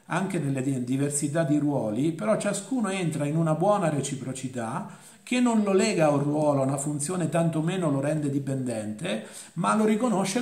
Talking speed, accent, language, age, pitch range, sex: 165 wpm, native, Italian, 50-69, 135-180 Hz, male